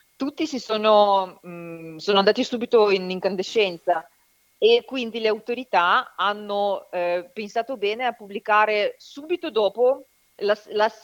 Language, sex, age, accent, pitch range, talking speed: Italian, female, 30-49, native, 170-215 Hz, 125 wpm